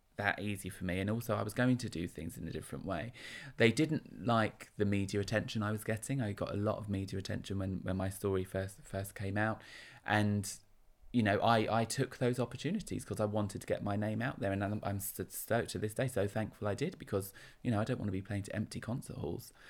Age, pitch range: 20-39, 100-125 Hz